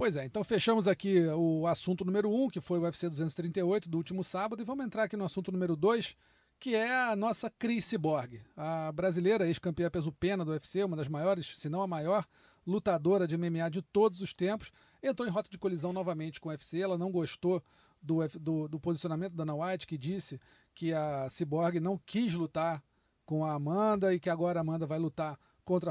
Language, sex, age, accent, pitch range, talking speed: Portuguese, male, 40-59, Brazilian, 165-205 Hz, 210 wpm